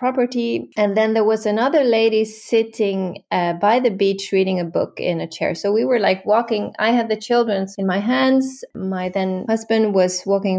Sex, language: female, English